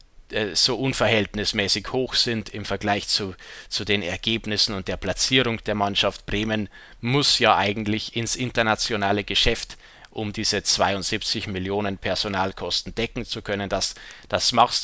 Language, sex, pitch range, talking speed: German, male, 105-135 Hz, 135 wpm